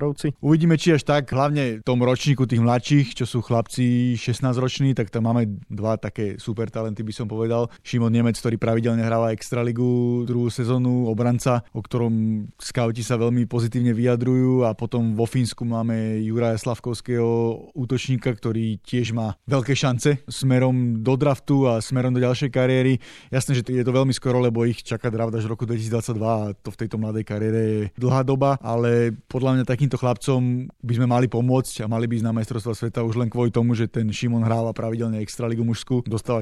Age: 30-49